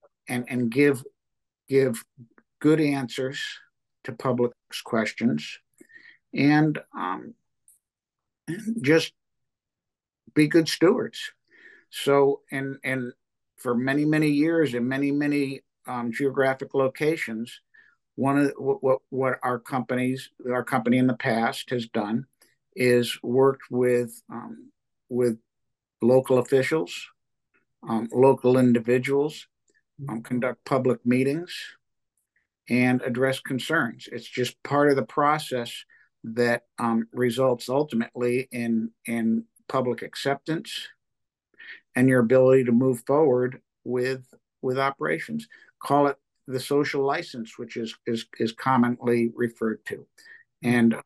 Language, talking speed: English, 115 wpm